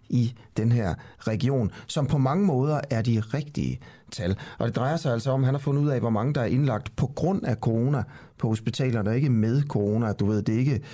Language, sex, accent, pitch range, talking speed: Danish, male, native, 110-140 Hz, 235 wpm